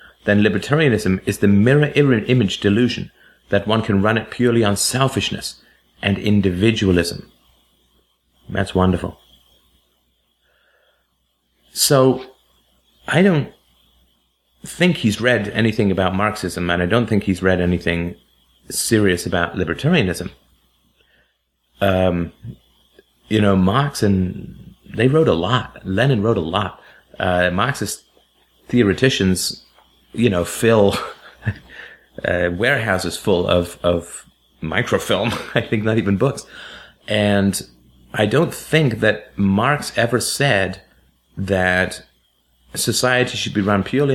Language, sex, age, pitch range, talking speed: English, male, 30-49, 80-110 Hz, 110 wpm